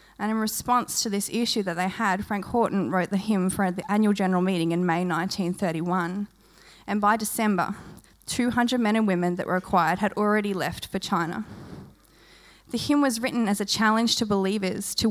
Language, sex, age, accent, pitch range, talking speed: English, female, 20-39, Australian, 190-220 Hz, 185 wpm